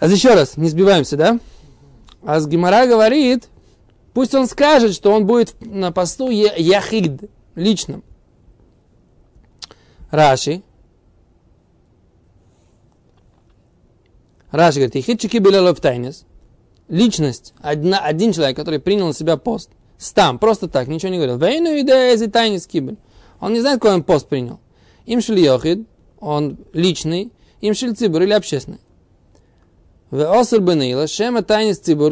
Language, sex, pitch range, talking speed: Russian, male, 145-215 Hz, 115 wpm